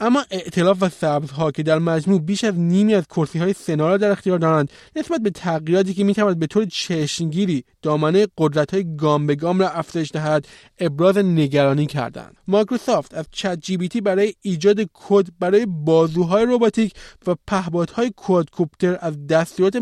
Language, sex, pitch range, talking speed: Persian, male, 155-195 Hz, 165 wpm